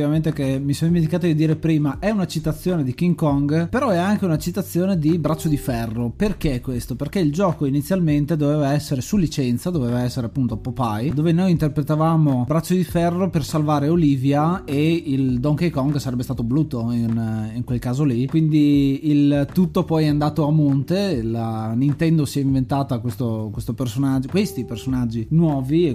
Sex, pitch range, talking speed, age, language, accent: male, 135-165 Hz, 180 wpm, 20-39, Italian, native